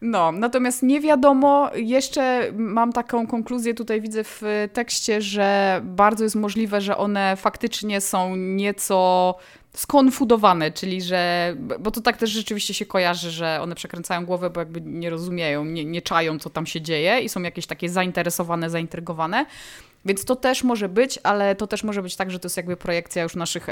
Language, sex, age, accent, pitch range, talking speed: Polish, female, 20-39, native, 175-230 Hz, 175 wpm